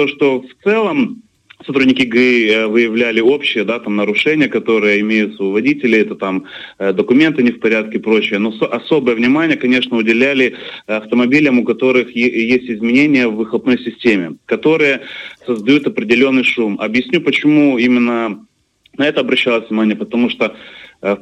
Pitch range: 115-135 Hz